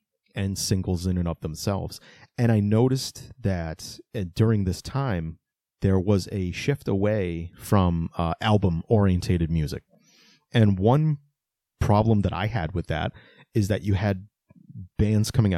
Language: English